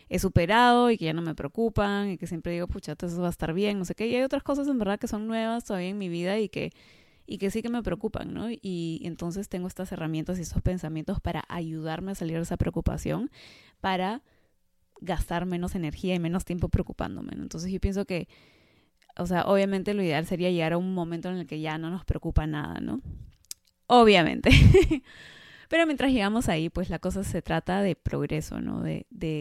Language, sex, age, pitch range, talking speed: Spanish, female, 20-39, 165-205 Hz, 215 wpm